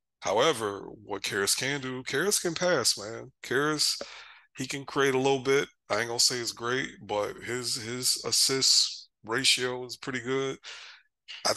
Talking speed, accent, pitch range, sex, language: 160 wpm, American, 105-130 Hz, male, English